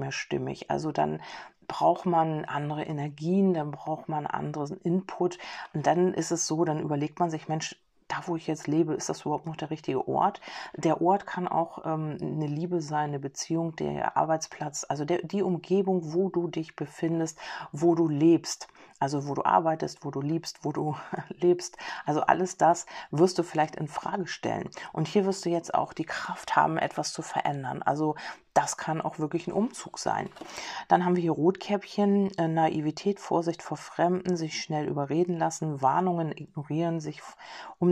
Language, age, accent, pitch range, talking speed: German, 40-59, German, 155-175 Hz, 180 wpm